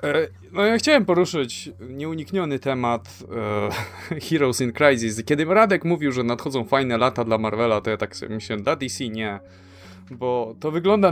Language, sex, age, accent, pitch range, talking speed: Polish, male, 20-39, native, 120-170 Hz, 160 wpm